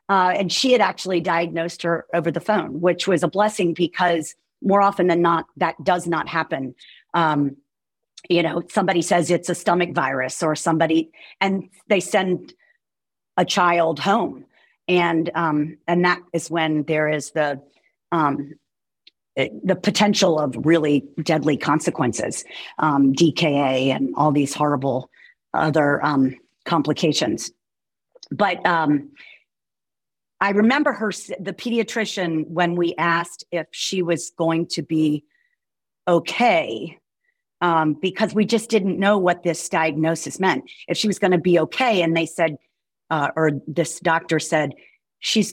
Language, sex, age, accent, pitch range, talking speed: English, female, 40-59, American, 155-195 Hz, 145 wpm